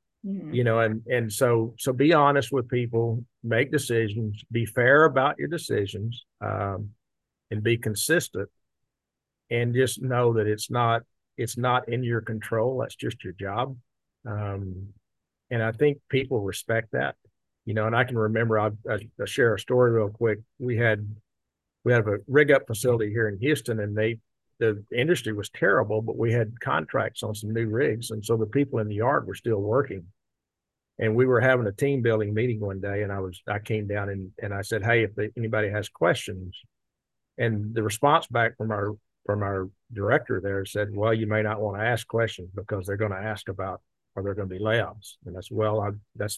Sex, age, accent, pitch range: male, 50-69, American, 105-120 Hz